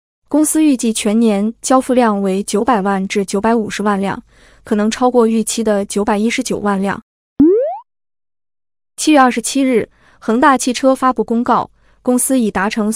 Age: 20-39